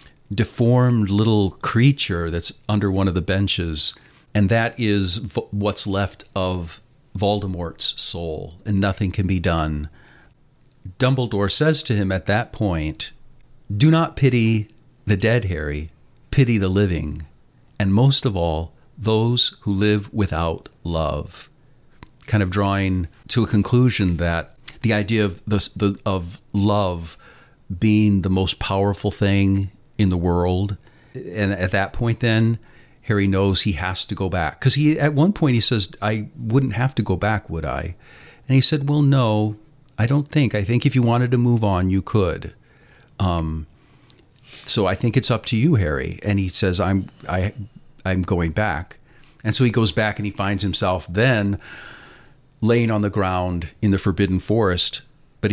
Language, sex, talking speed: English, male, 160 wpm